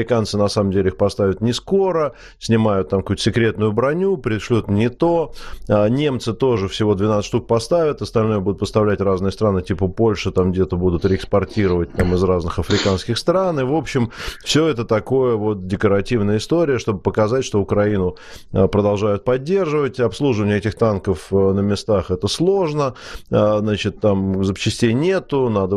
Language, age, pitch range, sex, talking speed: Russian, 30-49, 95-125 Hz, male, 150 wpm